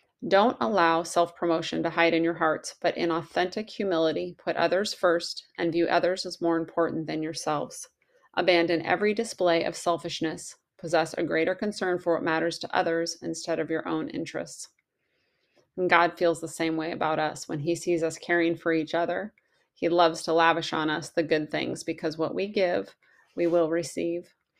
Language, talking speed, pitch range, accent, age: English, 180 wpm, 160-175 Hz, American, 30-49